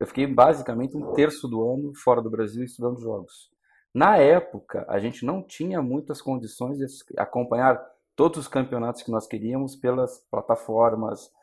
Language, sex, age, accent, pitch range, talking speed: Portuguese, male, 40-59, Brazilian, 110-135 Hz, 160 wpm